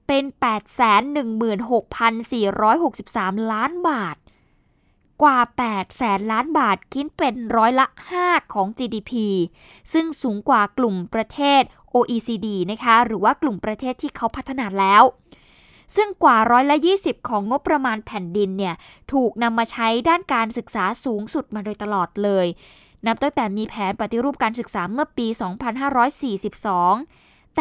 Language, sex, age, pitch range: Thai, female, 20-39, 215-275 Hz